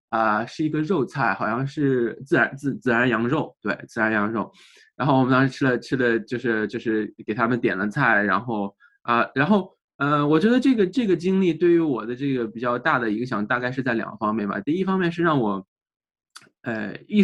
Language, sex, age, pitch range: Chinese, male, 20-39, 115-145 Hz